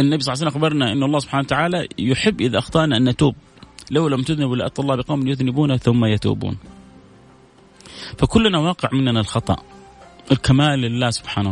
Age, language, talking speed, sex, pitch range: 30-49, Arabic, 160 wpm, male, 120-155 Hz